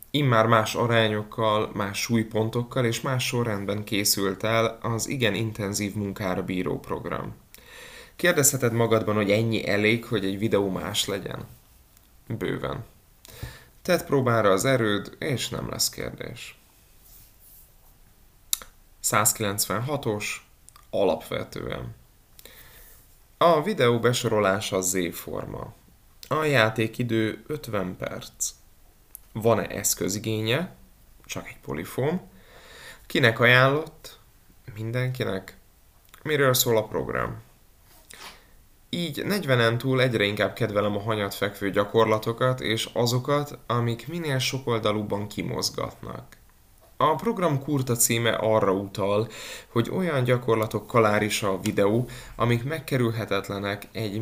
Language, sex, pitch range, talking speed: Hungarian, male, 100-125 Hz, 100 wpm